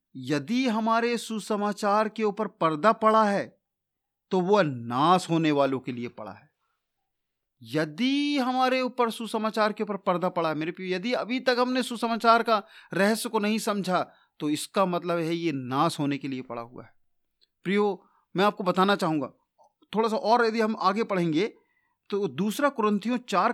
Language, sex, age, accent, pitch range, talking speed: Hindi, male, 40-59, native, 160-225 Hz, 170 wpm